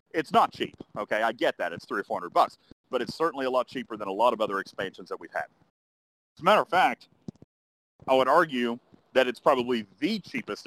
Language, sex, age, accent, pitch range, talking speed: English, male, 40-59, American, 110-140 Hz, 225 wpm